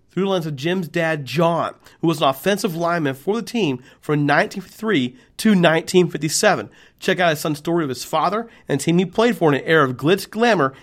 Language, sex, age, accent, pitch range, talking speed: English, male, 40-59, American, 145-185 Hz, 215 wpm